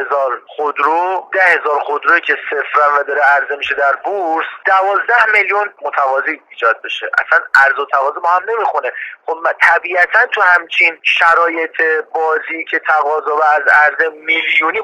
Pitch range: 150-195 Hz